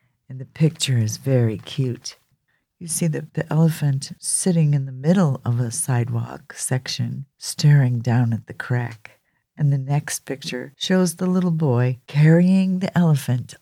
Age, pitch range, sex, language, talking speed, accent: 50-69, 125-165 Hz, female, English, 155 wpm, American